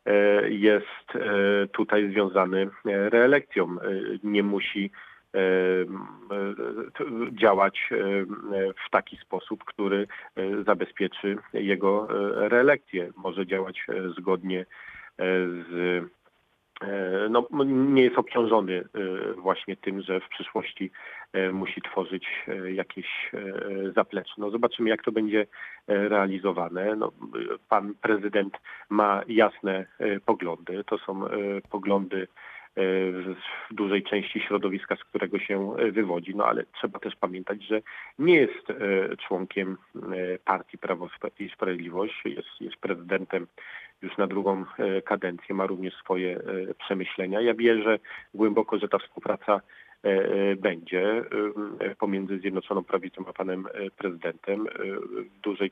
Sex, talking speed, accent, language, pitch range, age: male, 100 wpm, native, Polish, 95-105 Hz, 40-59